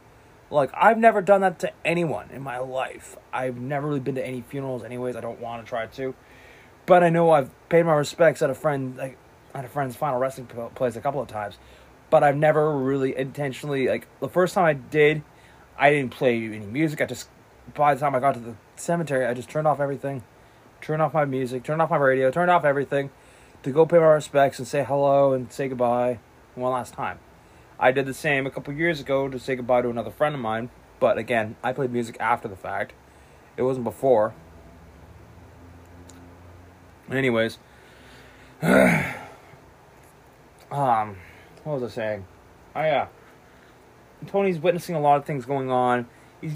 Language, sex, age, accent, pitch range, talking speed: English, male, 20-39, American, 120-150 Hz, 190 wpm